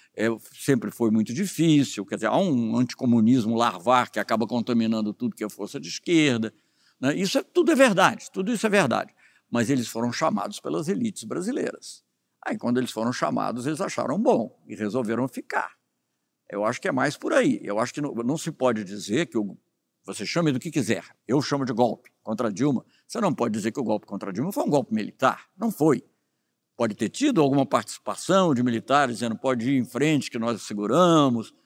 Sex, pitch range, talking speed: male, 115-170 Hz, 200 wpm